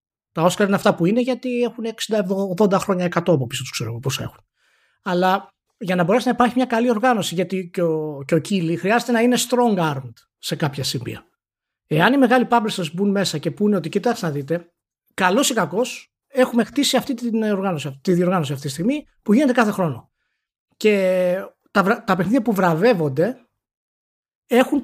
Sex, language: male, Greek